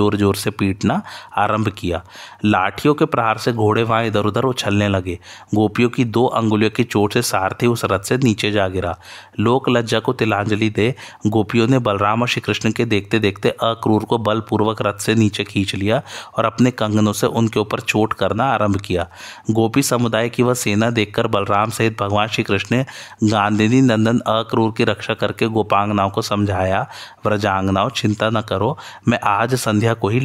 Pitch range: 105-120 Hz